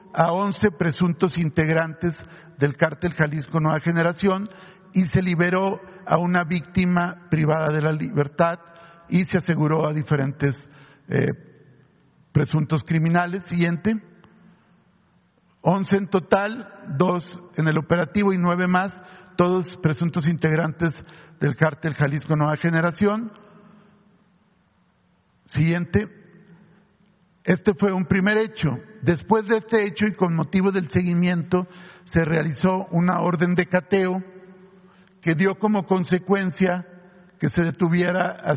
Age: 50-69